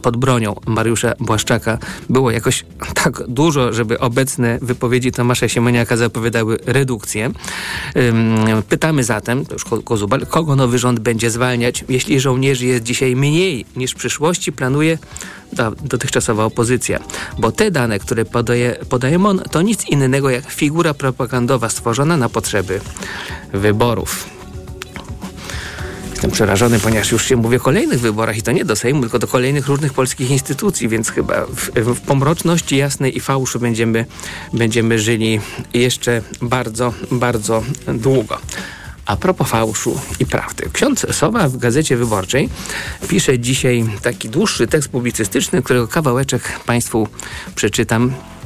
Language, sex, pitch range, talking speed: Polish, male, 115-135 Hz, 130 wpm